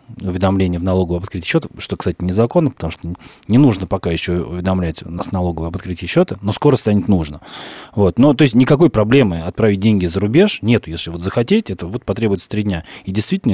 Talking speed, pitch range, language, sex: 200 wpm, 90-120 Hz, Russian, male